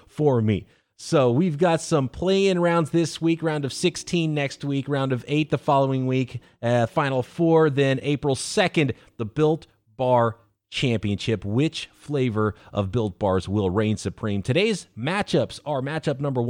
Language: English